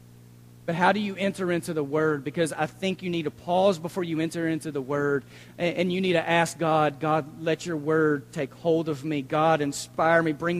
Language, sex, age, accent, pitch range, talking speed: English, male, 40-59, American, 155-210 Hz, 220 wpm